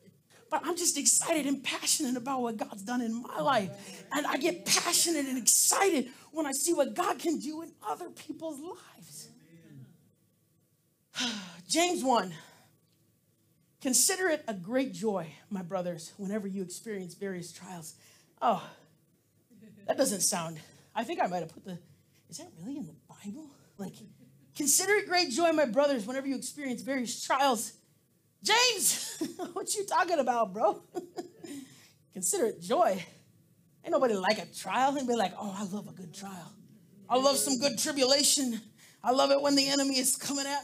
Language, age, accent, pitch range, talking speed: English, 40-59, American, 190-300 Hz, 165 wpm